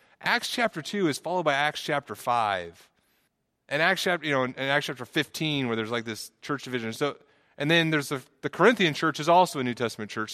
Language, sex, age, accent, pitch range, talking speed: English, male, 30-49, American, 115-150 Hz, 215 wpm